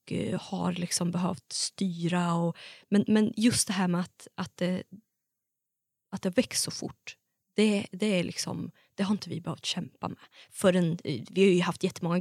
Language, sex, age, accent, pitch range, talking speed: Swedish, female, 20-39, native, 175-210 Hz, 180 wpm